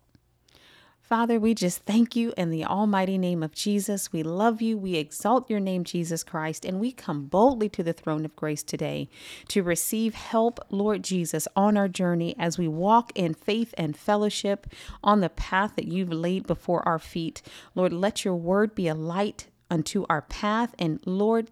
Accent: American